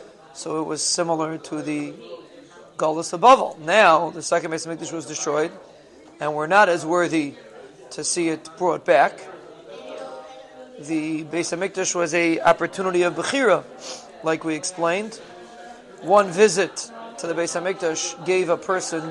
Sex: male